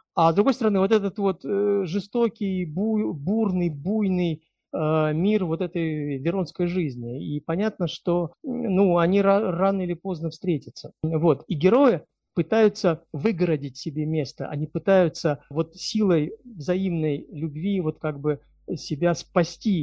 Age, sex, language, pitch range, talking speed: 50-69, male, Russian, 155-200 Hz, 135 wpm